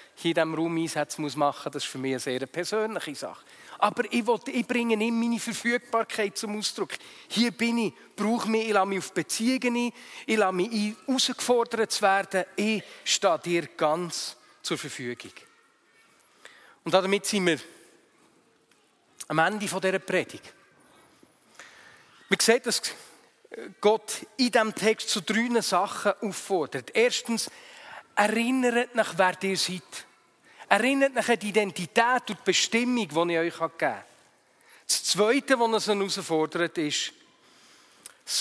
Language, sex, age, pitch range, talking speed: German, male, 40-59, 170-230 Hz, 135 wpm